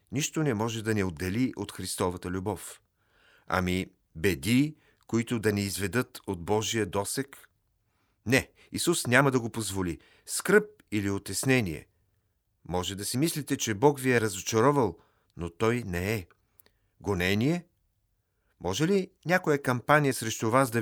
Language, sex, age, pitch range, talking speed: Bulgarian, male, 50-69, 100-135 Hz, 140 wpm